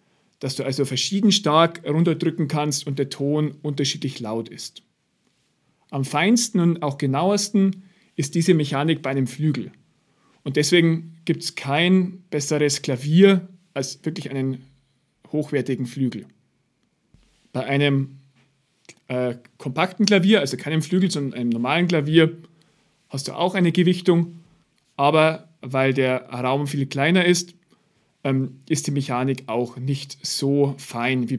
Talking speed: 130 wpm